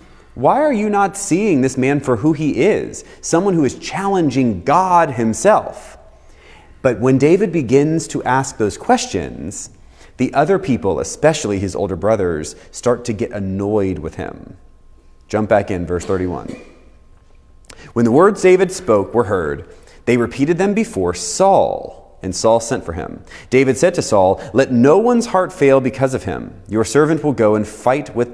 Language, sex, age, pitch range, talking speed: English, male, 30-49, 100-150 Hz, 165 wpm